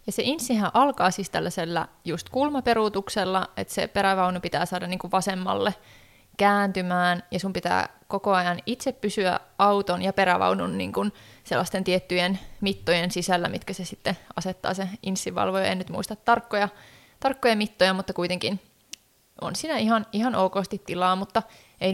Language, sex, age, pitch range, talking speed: Finnish, female, 20-39, 180-215 Hz, 140 wpm